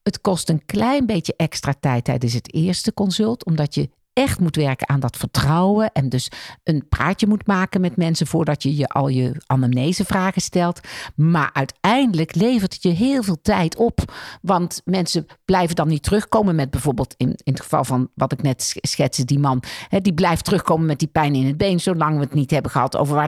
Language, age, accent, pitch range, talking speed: Dutch, 50-69, Dutch, 145-195 Hz, 205 wpm